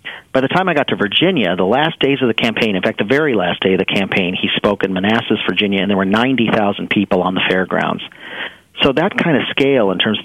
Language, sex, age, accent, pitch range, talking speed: English, male, 40-59, American, 100-130 Hz, 250 wpm